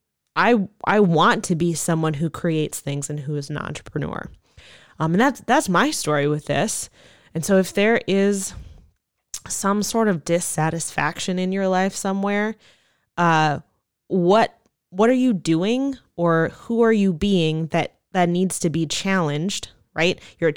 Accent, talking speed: American, 160 wpm